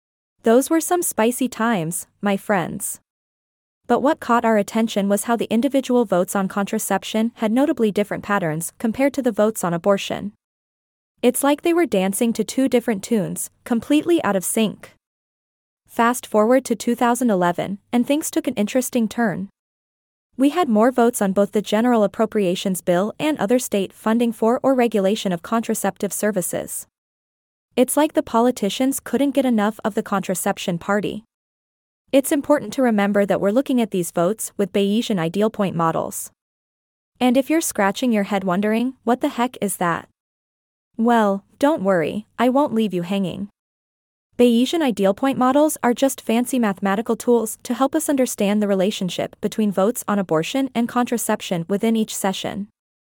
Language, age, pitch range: English, 20-39, 200-250 Hz